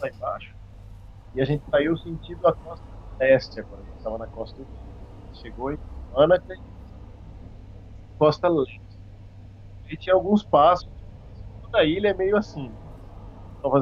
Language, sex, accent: Portuguese, male, Brazilian